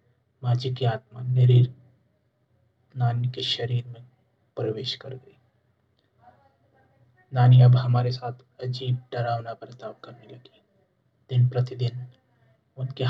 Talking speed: 105 wpm